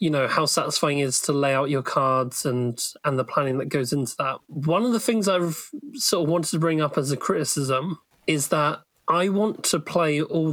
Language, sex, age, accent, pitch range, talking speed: English, male, 30-49, British, 140-185 Hz, 230 wpm